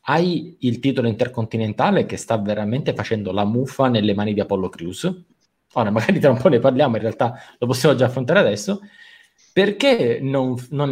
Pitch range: 115-155 Hz